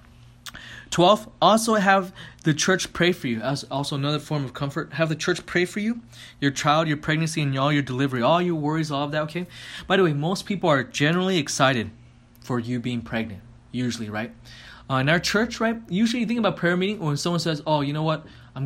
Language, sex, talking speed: English, male, 220 wpm